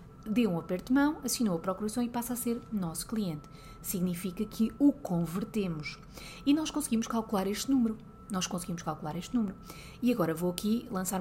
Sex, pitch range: female, 170-225 Hz